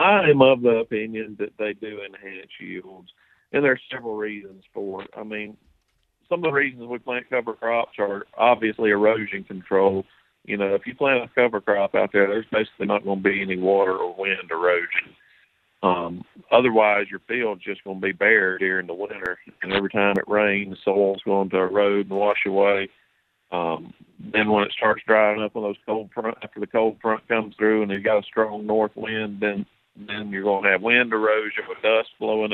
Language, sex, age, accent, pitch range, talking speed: English, male, 50-69, American, 100-115 Hz, 210 wpm